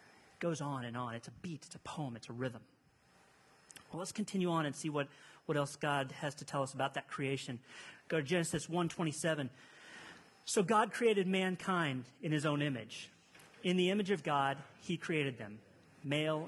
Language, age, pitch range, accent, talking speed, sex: English, 40-59, 140-200 Hz, American, 195 wpm, male